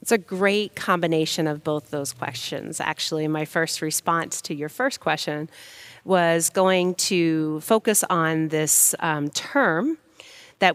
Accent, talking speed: American, 140 wpm